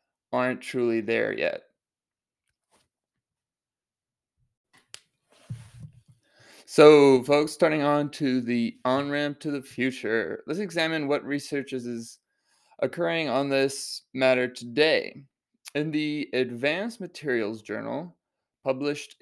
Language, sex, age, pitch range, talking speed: English, male, 20-39, 120-140 Hz, 95 wpm